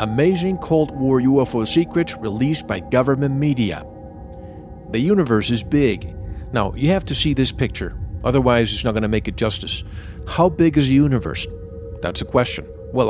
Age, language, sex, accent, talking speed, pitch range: 50-69, English, male, American, 170 wpm, 100-145 Hz